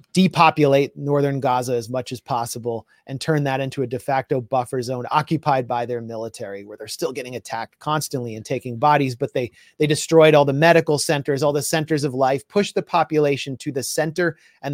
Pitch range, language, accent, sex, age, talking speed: 135-160 Hz, English, American, male, 30-49, 200 wpm